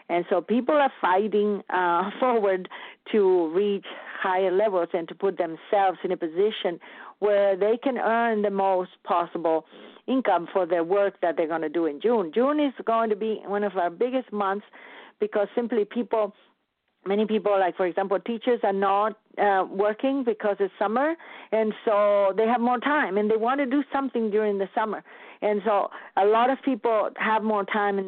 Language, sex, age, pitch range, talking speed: English, female, 50-69, 185-230 Hz, 185 wpm